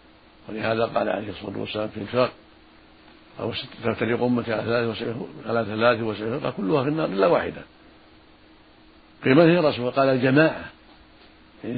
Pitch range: 110-130 Hz